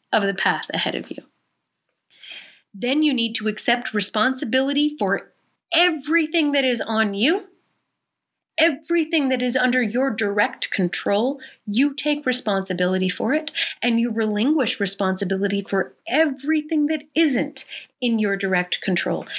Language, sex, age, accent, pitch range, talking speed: English, female, 40-59, American, 215-285 Hz, 130 wpm